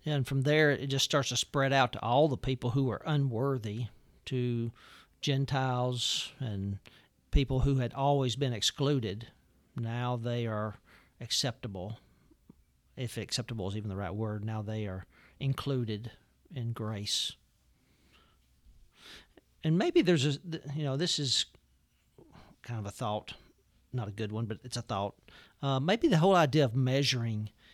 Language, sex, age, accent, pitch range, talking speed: English, male, 50-69, American, 110-140 Hz, 150 wpm